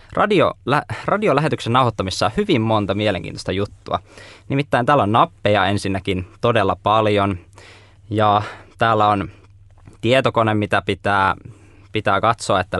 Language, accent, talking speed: Finnish, native, 115 wpm